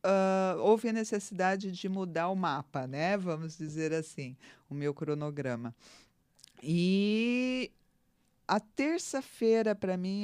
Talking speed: 110 wpm